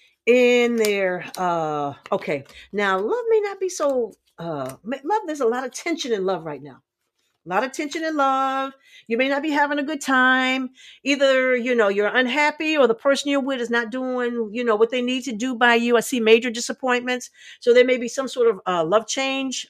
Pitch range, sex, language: 215-290 Hz, female, English